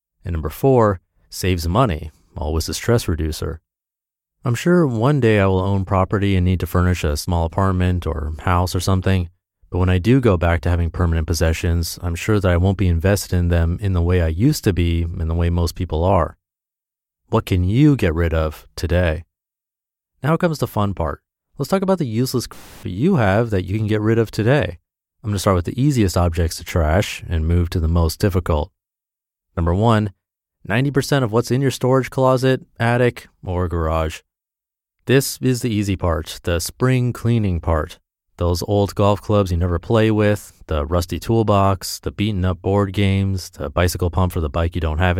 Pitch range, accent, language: 85-115 Hz, American, English